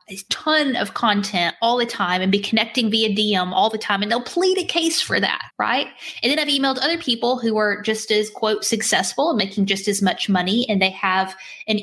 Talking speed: 230 wpm